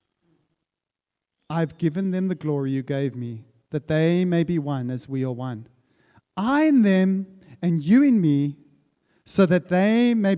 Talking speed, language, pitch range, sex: 160 wpm, English, 140-190 Hz, male